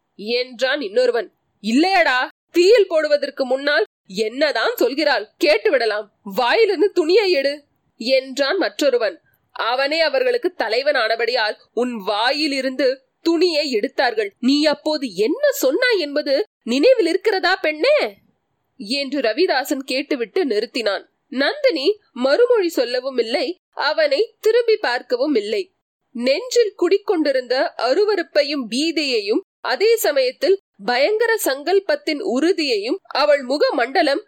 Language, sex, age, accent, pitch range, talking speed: Tamil, female, 20-39, native, 265-400 Hz, 85 wpm